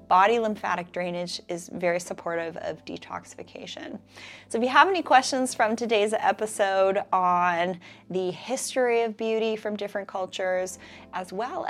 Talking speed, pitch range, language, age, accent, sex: 140 wpm, 175-225 Hz, English, 30-49, American, female